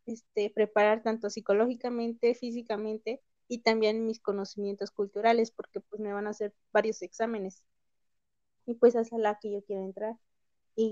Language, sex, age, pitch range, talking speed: Spanish, female, 20-39, 205-230 Hz, 150 wpm